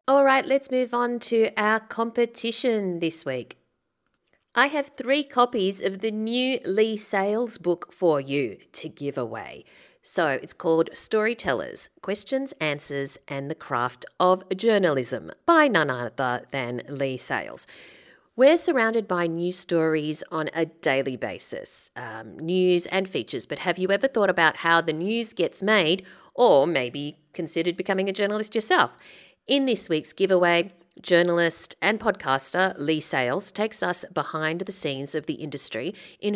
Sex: female